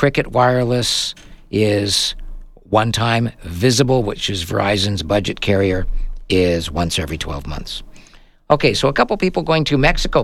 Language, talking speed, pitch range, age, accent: English, 135 wpm, 100-145 Hz, 50-69, American